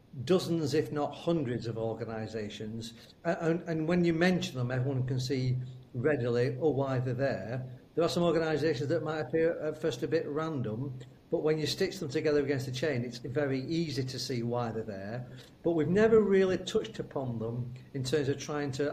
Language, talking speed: English, 190 wpm